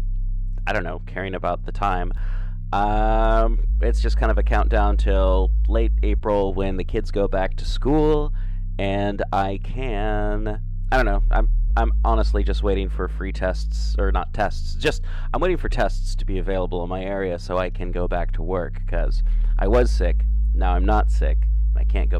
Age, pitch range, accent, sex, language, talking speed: 30-49, 90-105 Hz, American, male, English, 185 wpm